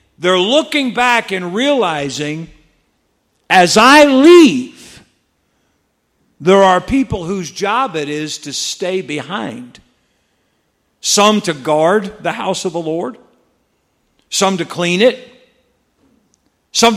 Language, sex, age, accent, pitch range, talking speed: English, male, 50-69, American, 180-245 Hz, 110 wpm